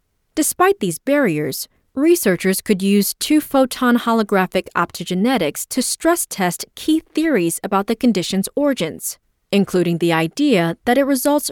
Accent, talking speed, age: American, 125 wpm, 30-49